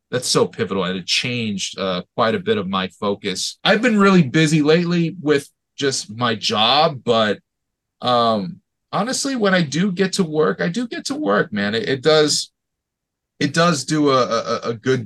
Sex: male